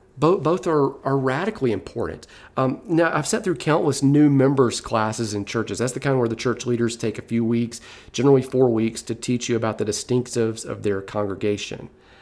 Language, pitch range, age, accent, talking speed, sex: English, 115-135 Hz, 40-59, American, 190 wpm, male